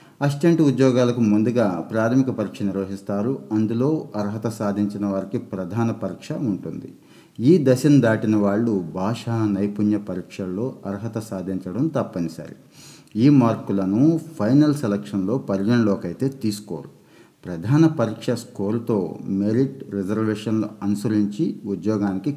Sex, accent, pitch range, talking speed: male, native, 100-120 Hz, 95 wpm